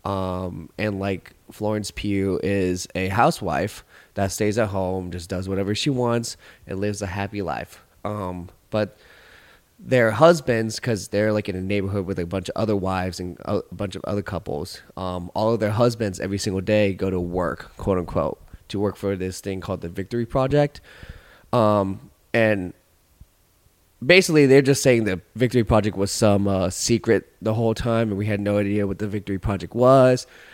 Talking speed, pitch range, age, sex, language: 180 wpm, 95-115 Hz, 20-39, male, English